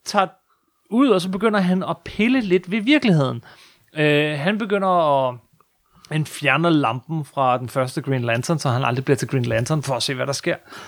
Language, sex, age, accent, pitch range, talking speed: Danish, male, 30-49, native, 140-185 Hz, 200 wpm